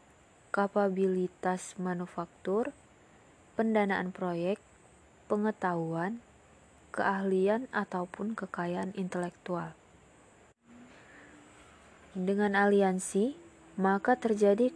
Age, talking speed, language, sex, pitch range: 20-39, 55 wpm, Indonesian, female, 175-205 Hz